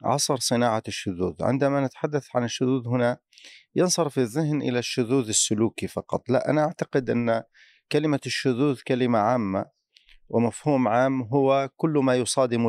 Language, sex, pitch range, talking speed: Arabic, male, 110-130 Hz, 130 wpm